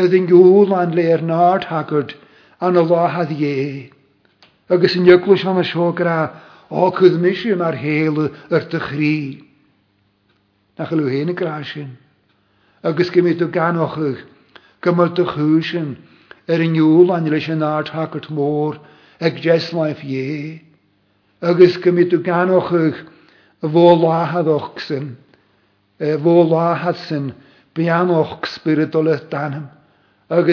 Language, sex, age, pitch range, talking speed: English, male, 60-79, 145-175 Hz, 85 wpm